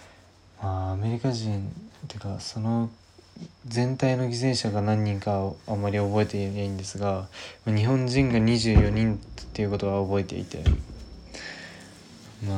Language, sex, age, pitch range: Japanese, male, 20-39, 100-120 Hz